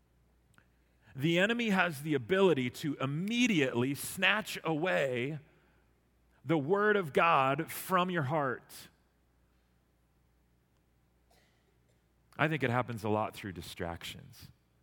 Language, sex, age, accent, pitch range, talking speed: English, male, 30-49, American, 115-170 Hz, 95 wpm